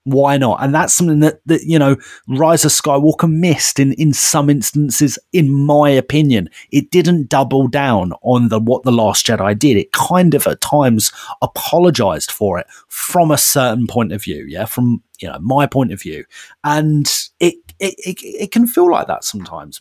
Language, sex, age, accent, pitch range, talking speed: English, male, 30-49, British, 120-160 Hz, 190 wpm